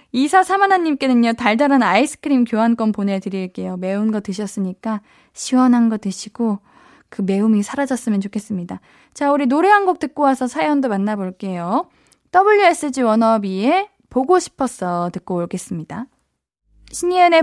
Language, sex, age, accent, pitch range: Korean, female, 20-39, native, 200-300 Hz